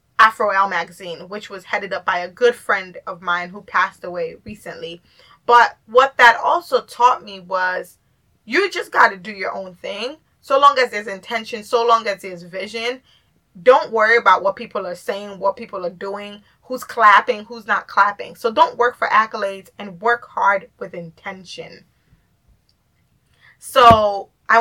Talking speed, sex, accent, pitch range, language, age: 170 wpm, female, American, 185-235 Hz, English, 20-39